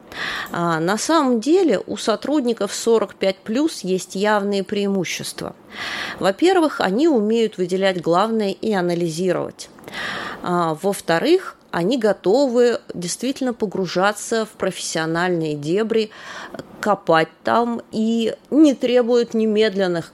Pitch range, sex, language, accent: 170-235 Hz, female, Russian, native